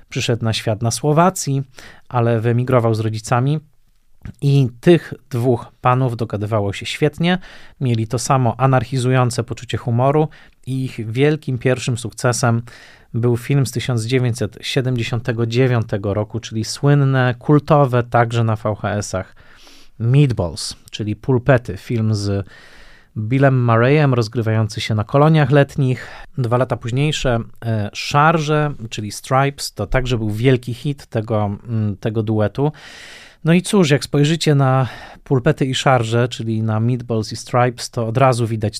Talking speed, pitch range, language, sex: 125 wpm, 115-140 Hz, Polish, male